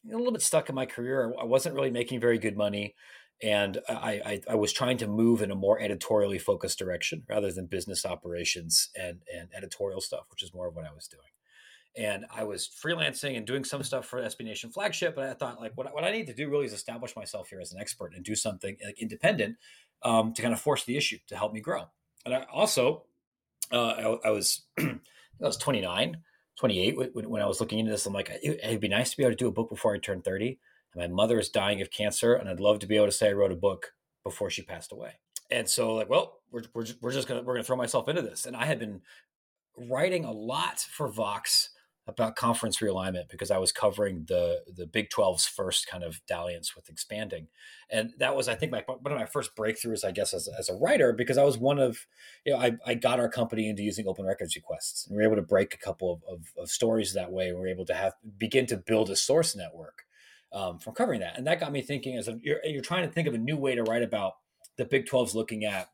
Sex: male